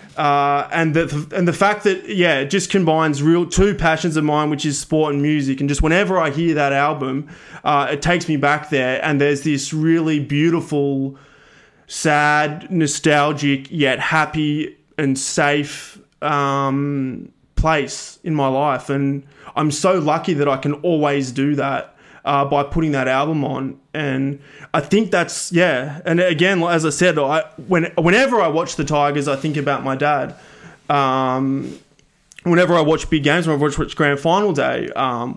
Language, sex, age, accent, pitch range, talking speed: English, male, 20-39, Australian, 140-165 Hz, 175 wpm